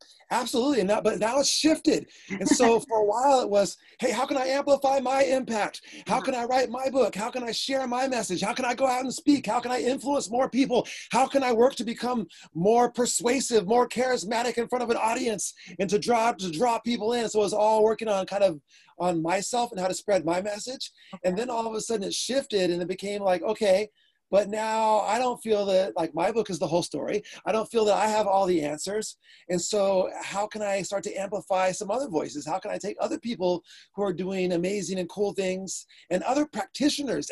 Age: 30-49